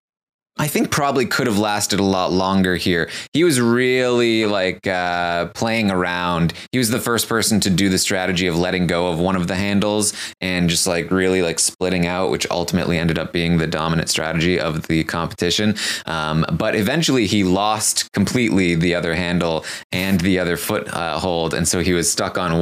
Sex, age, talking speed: male, 20-39, 195 wpm